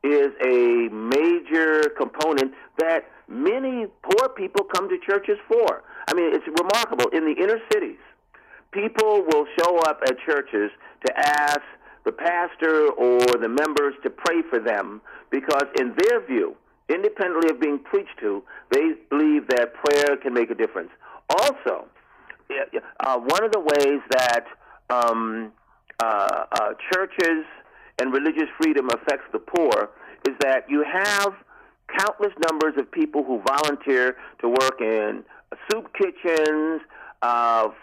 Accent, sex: American, male